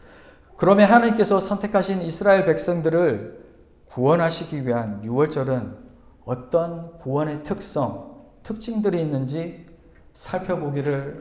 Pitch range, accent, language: 135-200 Hz, native, Korean